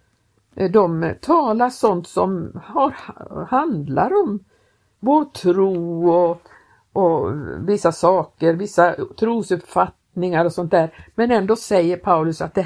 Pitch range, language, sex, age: 175-235 Hz, Swedish, female, 50-69